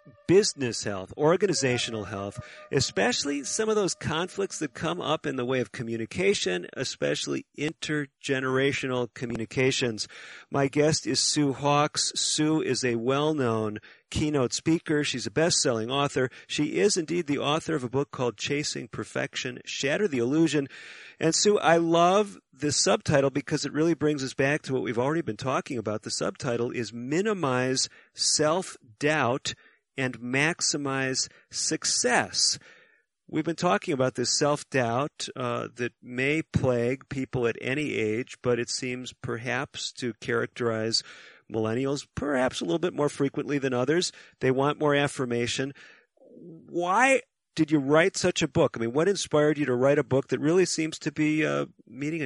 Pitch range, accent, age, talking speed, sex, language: 125-155 Hz, American, 40-59, 150 wpm, male, English